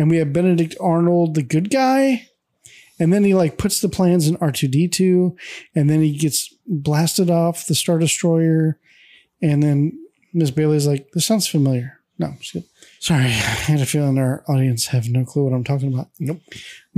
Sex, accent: male, American